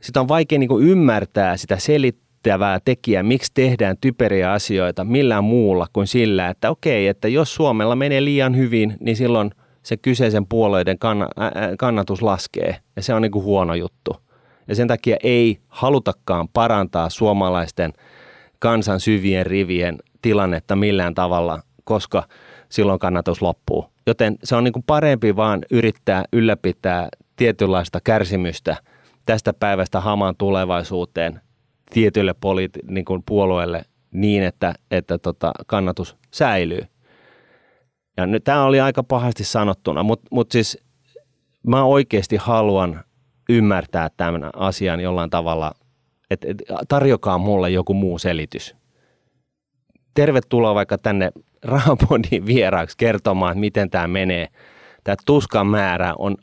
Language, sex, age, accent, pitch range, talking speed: Finnish, male, 30-49, native, 90-120 Hz, 125 wpm